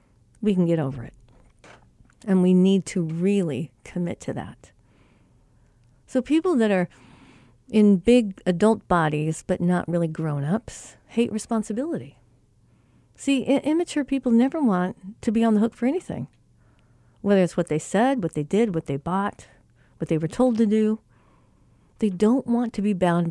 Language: English